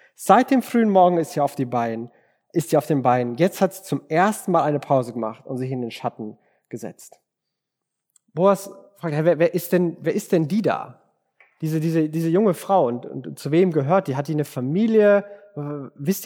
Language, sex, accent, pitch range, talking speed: German, male, German, 140-185 Hz, 205 wpm